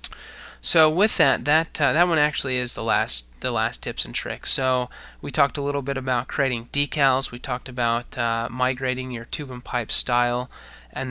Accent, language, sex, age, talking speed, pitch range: American, English, male, 20-39, 195 wpm, 120-135 Hz